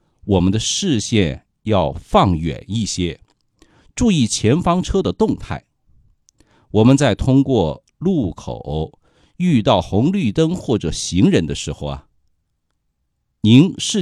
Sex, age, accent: male, 50-69, native